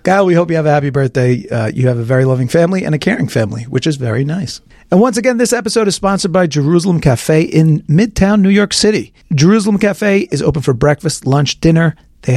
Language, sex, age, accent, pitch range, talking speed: English, male, 40-59, American, 135-195 Hz, 230 wpm